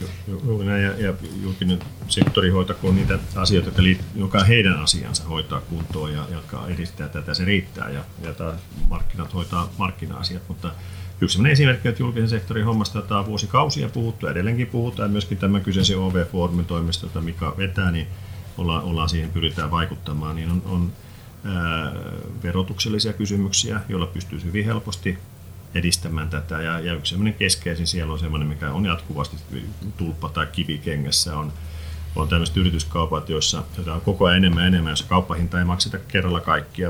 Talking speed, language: 155 wpm, Finnish